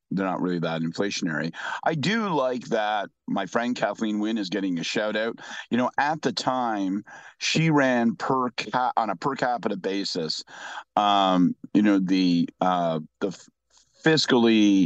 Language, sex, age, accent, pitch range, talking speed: English, male, 50-69, American, 95-130 Hz, 160 wpm